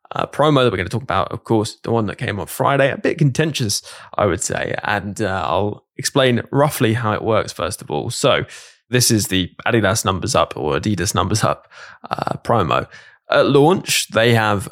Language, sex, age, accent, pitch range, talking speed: English, male, 10-29, British, 105-120 Hz, 205 wpm